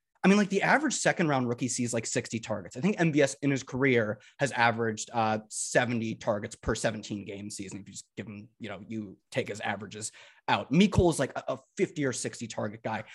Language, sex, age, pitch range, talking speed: English, male, 20-39, 115-160 Hz, 220 wpm